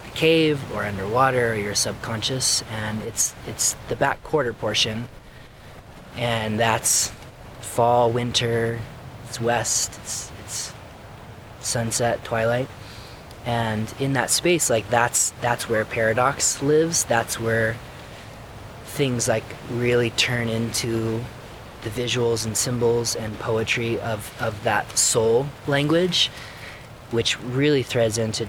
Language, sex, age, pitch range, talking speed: English, male, 30-49, 110-125 Hz, 115 wpm